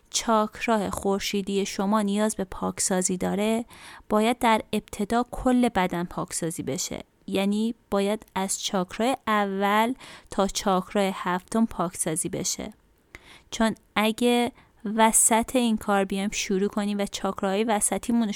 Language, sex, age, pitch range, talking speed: Persian, female, 30-49, 190-235 Hz, 115 wpm